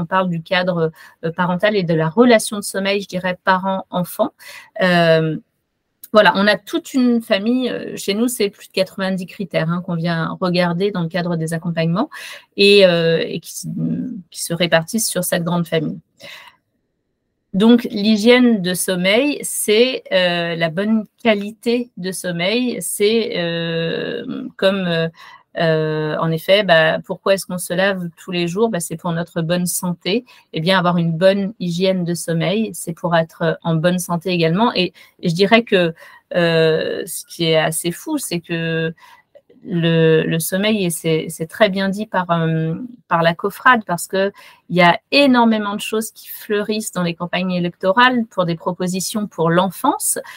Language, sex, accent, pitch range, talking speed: French, female, French, 170-225 Hz, 165 wpm